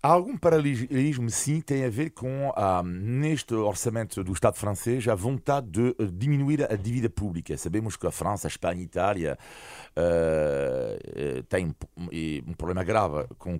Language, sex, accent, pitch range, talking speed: Portuguese, male, French, 95-130 Hz, 165 wpm